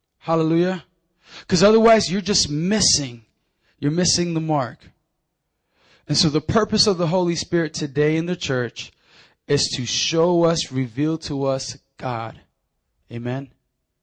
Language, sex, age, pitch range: English, male, 20-39, 145-195 Hz